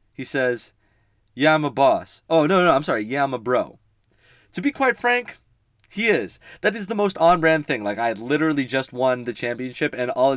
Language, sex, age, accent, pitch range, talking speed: English, male, 20-39, American, 120-170 Hz, 210 wpm